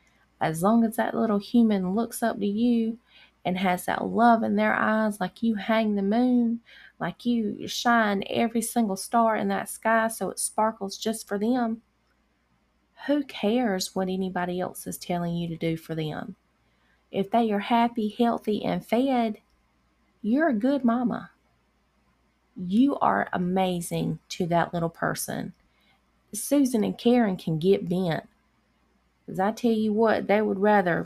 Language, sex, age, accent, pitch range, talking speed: English, female, 30-49, American, 175-225 Hz, 155 wpm